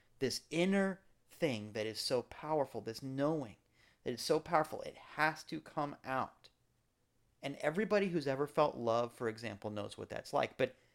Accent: American